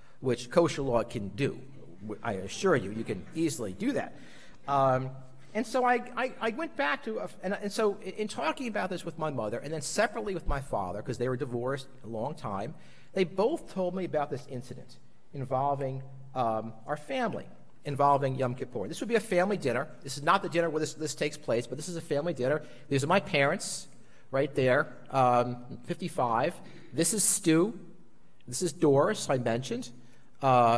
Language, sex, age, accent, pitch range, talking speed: English, male, 50-69, American, 125-175 Hz, 195 wpm